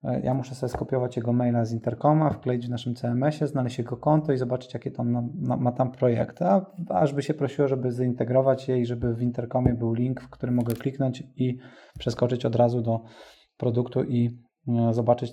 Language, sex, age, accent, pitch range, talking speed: Polish, male, 20-39, native, 120-145 Hz, 185 wpm